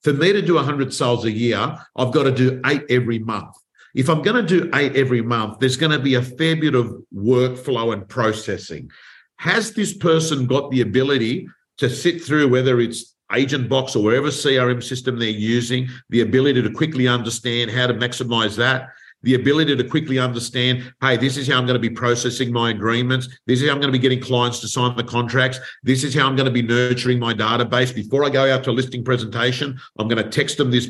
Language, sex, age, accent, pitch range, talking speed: English, male, 50-69, Australian, 120-140 Hz, 225 wpm